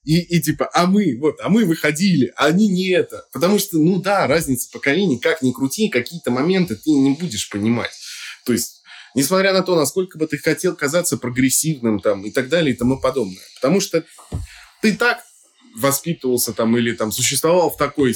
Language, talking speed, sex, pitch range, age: Russian, 190 wpm, male, 120-175 Hz, 20-39